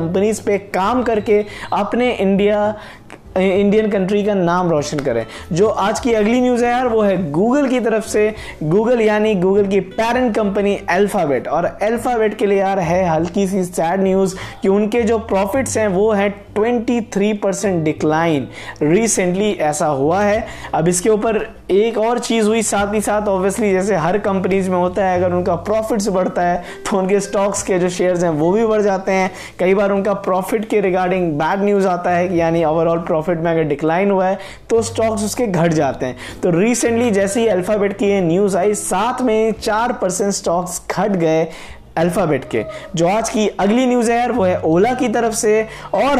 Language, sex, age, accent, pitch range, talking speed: Hindi, male, 20-39, native, 180-225 Hz, 190 wpm